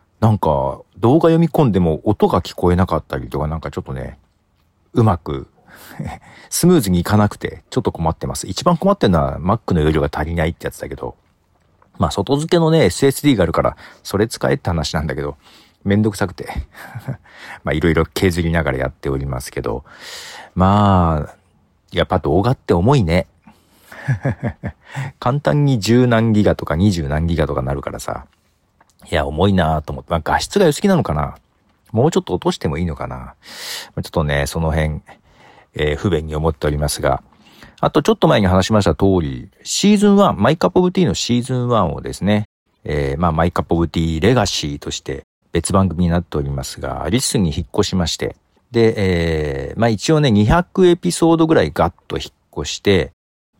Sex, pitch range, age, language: male, 75-115 Hz, 50-69, Japanese